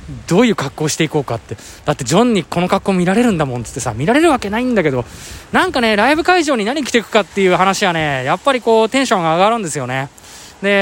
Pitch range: 145-210 Hz